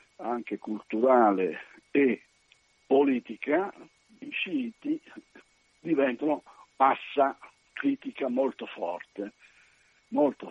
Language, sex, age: Italian, male, 60-79